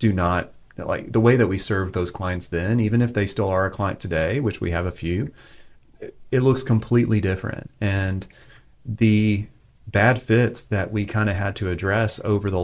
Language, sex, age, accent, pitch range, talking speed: English, male, 30-49, American, 95-115 Hz, 200 wpm